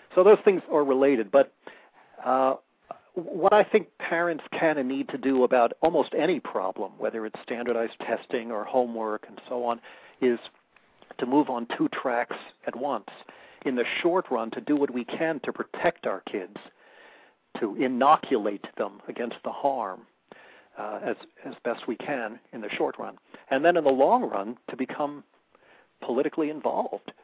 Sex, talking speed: male, 165 wpm